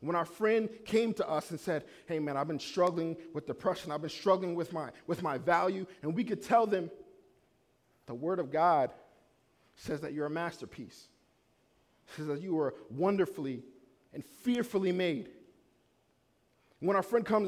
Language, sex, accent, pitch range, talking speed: English, male, American, 140-225 Hz, 165 wpm